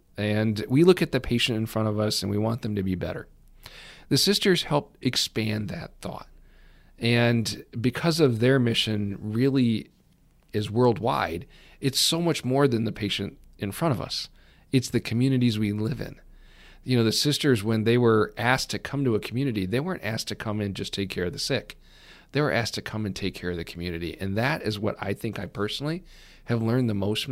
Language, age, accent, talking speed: English, 40-59, American, 215 wpm